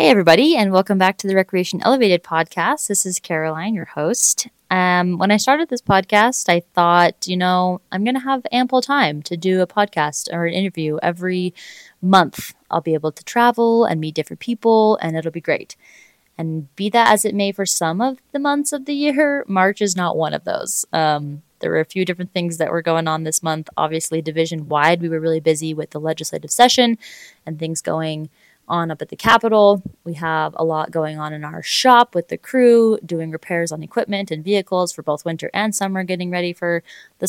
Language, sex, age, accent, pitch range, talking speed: English, female, 20-39, American, 160-205 Hz, 210 wpm